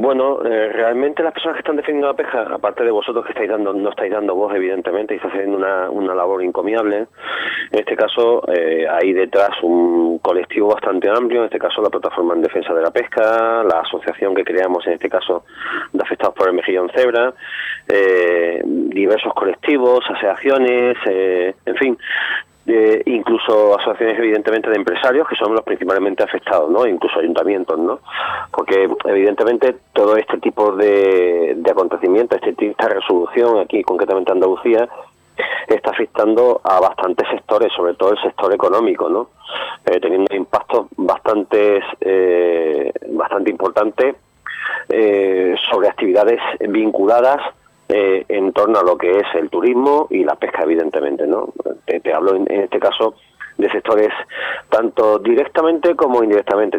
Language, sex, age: Spanish, male, 30-49